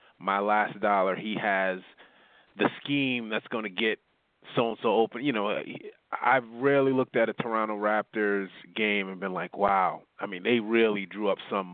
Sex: male